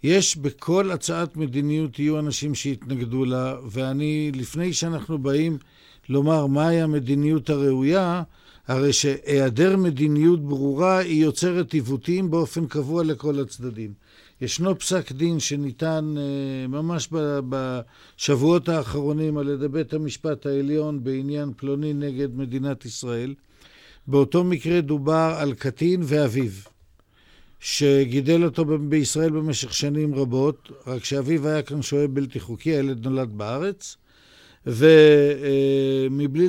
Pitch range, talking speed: 135-160 Hz, 110 wpm